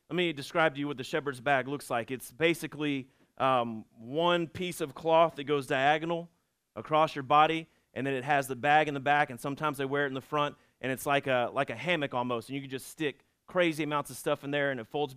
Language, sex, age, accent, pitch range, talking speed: English, male, 30-49, American, 145-185 Hz, 250 wpm